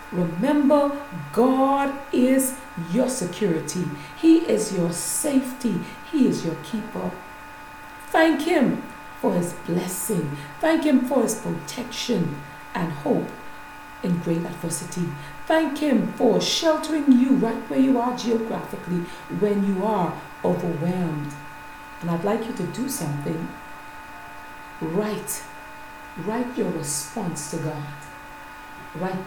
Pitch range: 150-240 Hz